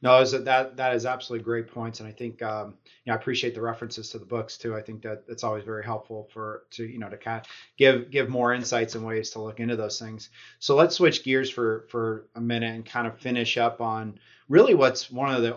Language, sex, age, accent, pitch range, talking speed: English, male, 30-49, American, 115-125 Hz, 250 wpm